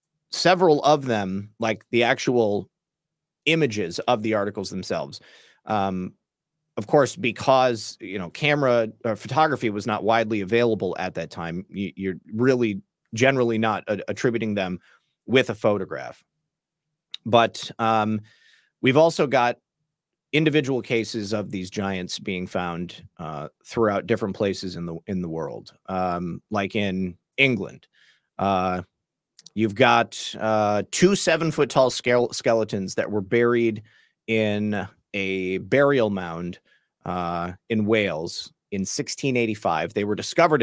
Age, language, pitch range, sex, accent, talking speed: 30-49, English, 100-125 Hz, male, American, 125 wpm